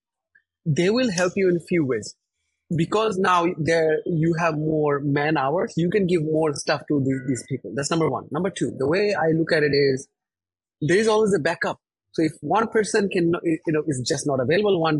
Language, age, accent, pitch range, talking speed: English, 30-49, Indian, 145-195 Hz, 215 wpm